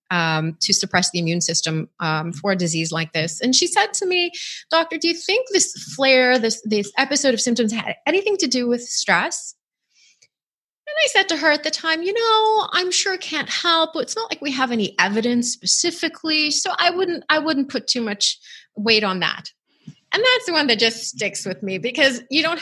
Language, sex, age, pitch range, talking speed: English, female, 30-49, 210-305 Hz, 210 wpm